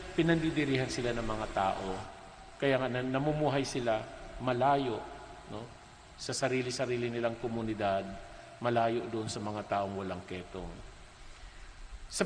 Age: 50-69